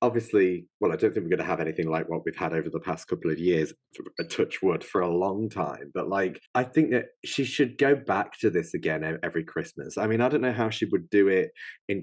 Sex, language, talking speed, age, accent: male, English, 260 wpm, 20-39, British